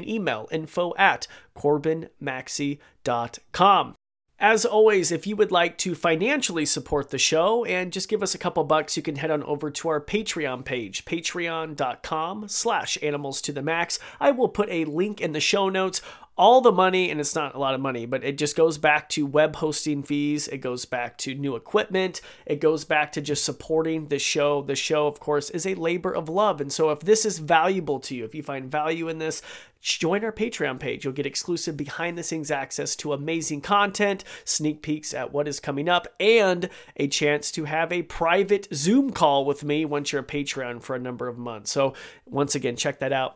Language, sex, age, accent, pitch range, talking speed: English, male, 30-49, American, 145-180 Hz, 205 wpm